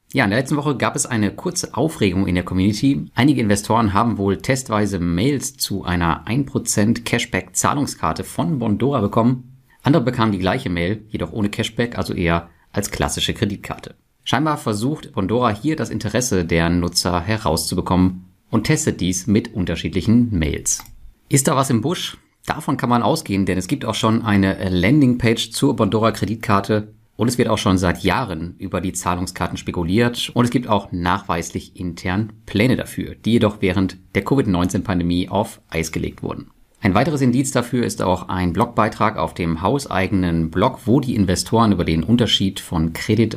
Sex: male